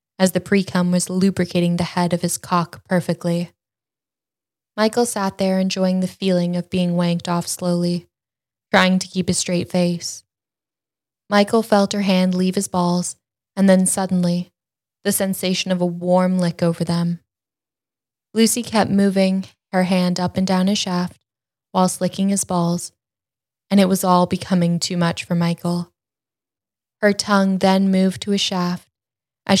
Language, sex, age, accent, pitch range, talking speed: English, female, 10-29, American, 175-190 Hz, 155 wpm